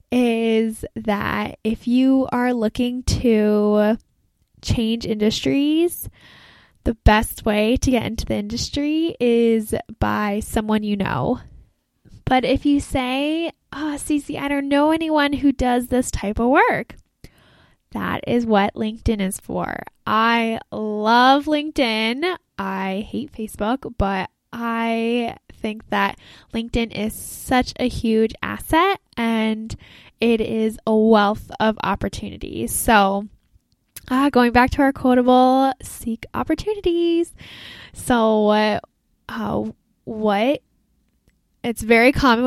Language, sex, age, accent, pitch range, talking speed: English, female, 10-29, American, 220-280 Hz, 115 wpm